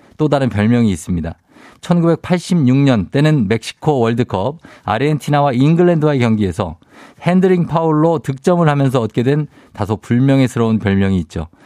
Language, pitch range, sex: Korean, 105-150 Hz, male